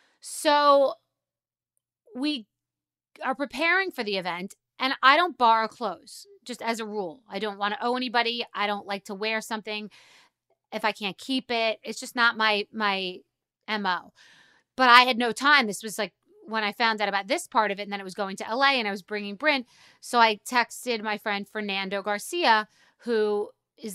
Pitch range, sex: 205-255 Hz, female